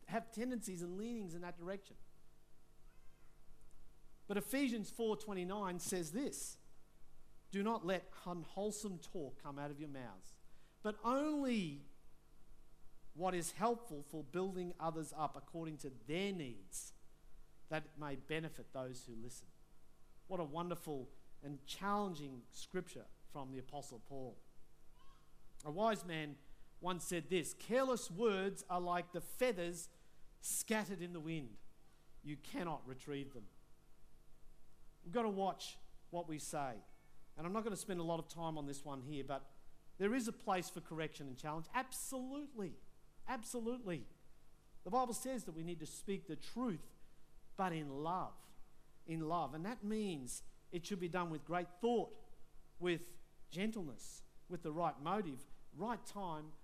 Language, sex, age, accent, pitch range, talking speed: English, male, 50-69, Australian, 150-200 Hz, 145 wpm